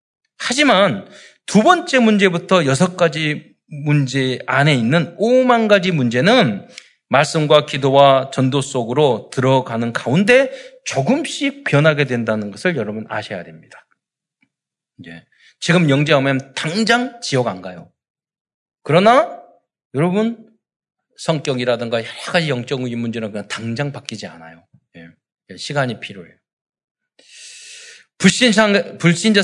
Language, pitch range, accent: Korean, 125-195 Hz, native